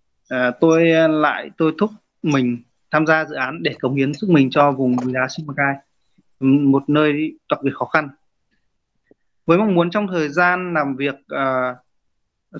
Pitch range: 135-180 Hz